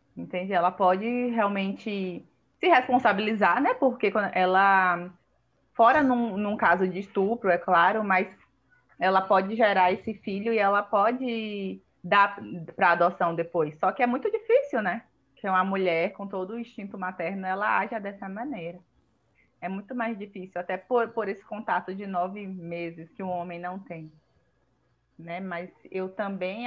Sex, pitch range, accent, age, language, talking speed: female, 180-225 Hz, Brazilian, 20-39, Portuguese, 155 wpm